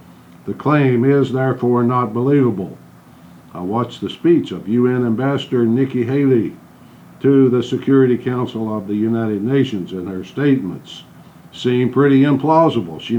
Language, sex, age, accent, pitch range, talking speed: English, male, 60-79, American, 105-135 Hz, 135 wpm